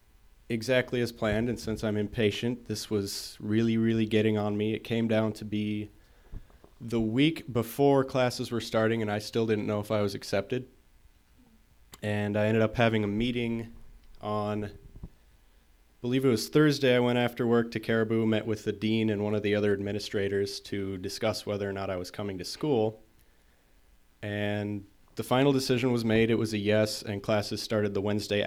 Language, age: English, 30-49